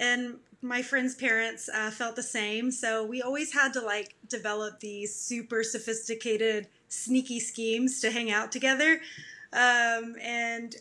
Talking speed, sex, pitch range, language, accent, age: 145 wpm, female, 225-265 Hz, English, American, 30-49